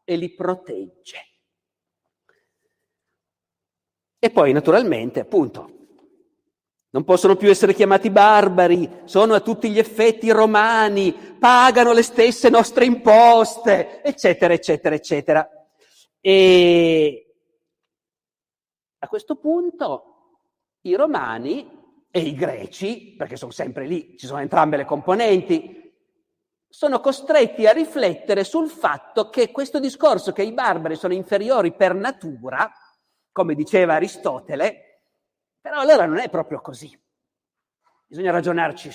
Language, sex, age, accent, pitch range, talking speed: Italian, male, 50-69, native, 175-285 Hz, 110 wpm